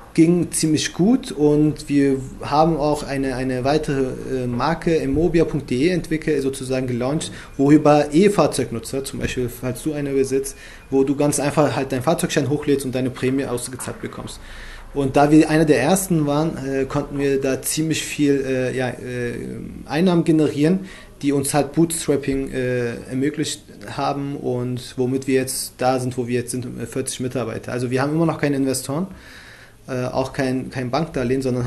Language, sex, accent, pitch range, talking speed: German, male, German, 125-150 Hz, 155 wpm